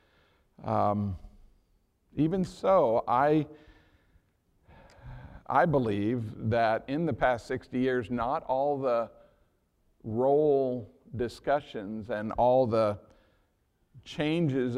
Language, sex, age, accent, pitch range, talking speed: English, male, 50-69, American, 105-140 Hz, 85 wpm